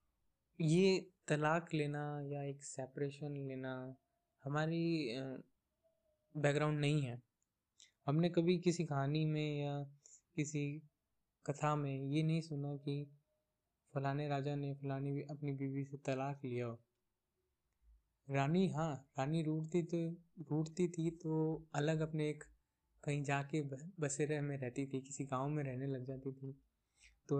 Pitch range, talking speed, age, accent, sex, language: 135-155 Hz, 140 wpm, 20-39, native, male, Hindi